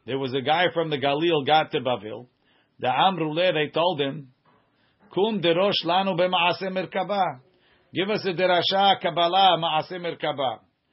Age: 50-69